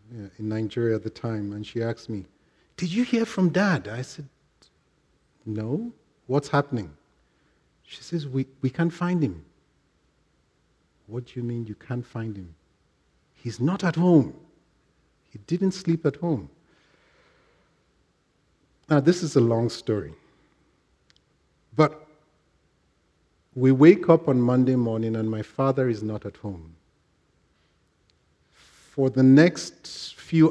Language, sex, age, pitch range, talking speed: English, male, 50-69, 110-145 Hz, 130 wpm